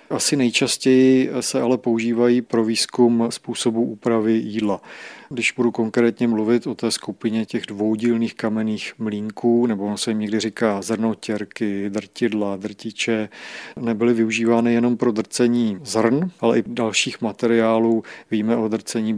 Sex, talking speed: male, 135 wpm